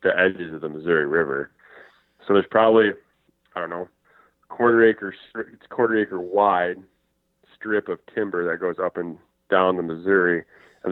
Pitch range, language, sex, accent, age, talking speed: 90-105 Hz, English, male, American, 20-39, 160 wpm